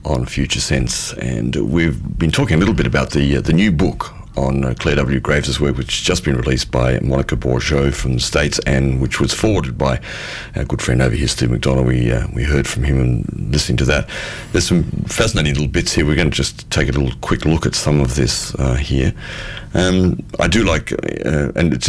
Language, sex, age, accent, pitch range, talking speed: English, male, 40-59, Australian, 65-80 Hz, 230 wpm